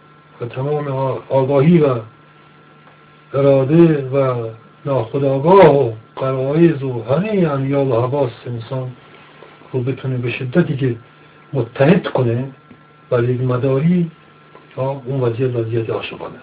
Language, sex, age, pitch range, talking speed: Persian, male, 60-79, 130-150 Hz, 100 wpm